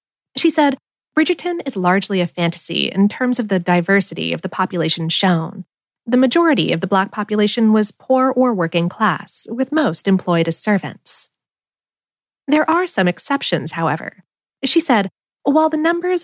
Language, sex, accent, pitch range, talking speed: English, female, American, 180-275 Hz, 155 wpm